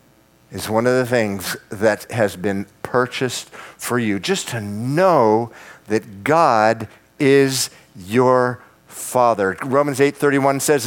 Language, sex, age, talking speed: English, male, 50-69, 125 wpm